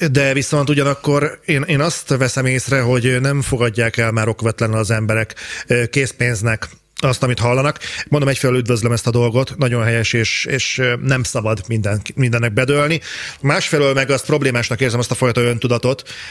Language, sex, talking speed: Hungarian, male, 160 wpm